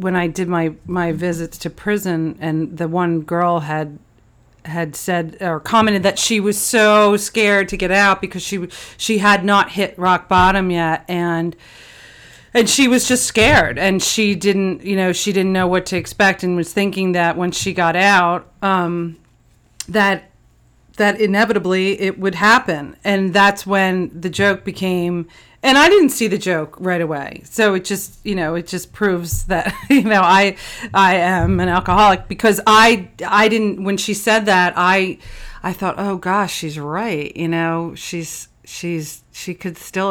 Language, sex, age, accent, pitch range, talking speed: English, female, 40-59, American, 175-200 Hz, 175 wpm